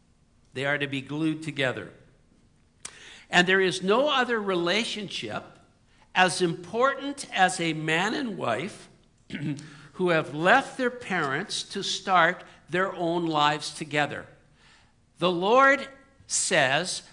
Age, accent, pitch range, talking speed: 60-79, American, 150-200 Hz, 115 wpm